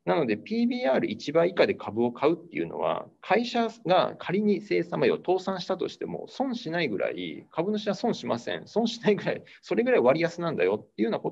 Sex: male